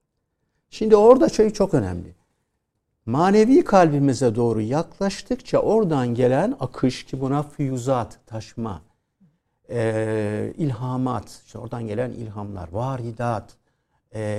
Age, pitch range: 60-79, 115-190 Hz